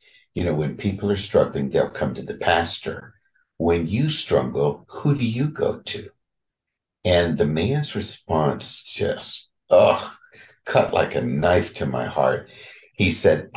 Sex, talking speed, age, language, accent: male, 150 wpm, 60-79, English, American